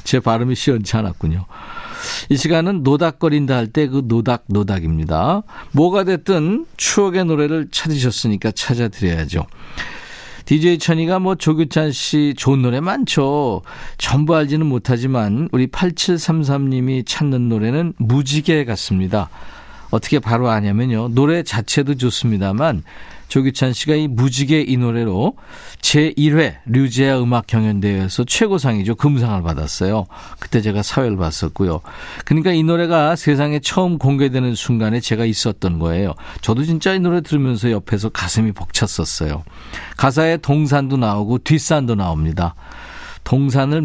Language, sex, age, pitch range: Korean, male, 50-69, 105-155 Hz